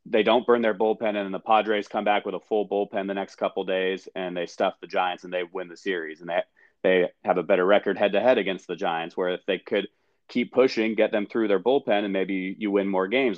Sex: male